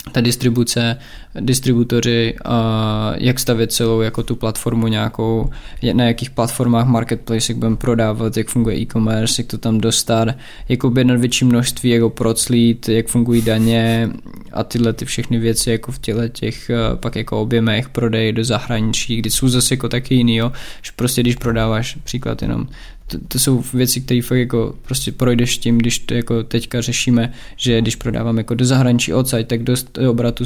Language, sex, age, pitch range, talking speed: Czech, male, 20-39, 115-125 Hz, 175 wpm